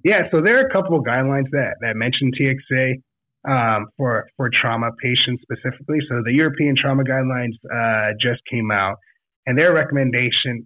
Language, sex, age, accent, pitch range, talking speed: English, male, 30-49, American, 115-140 Hz, 170 wpm